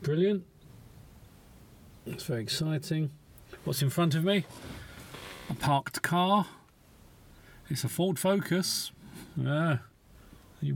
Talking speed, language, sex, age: 100 wpm, English, male, 40-59